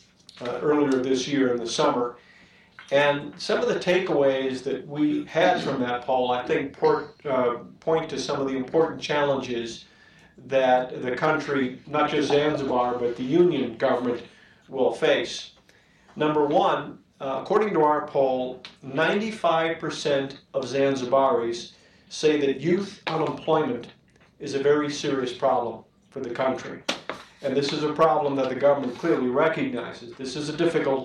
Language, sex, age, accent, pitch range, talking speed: English, male, 50-69, American, 130-155 Hz, 145 wpm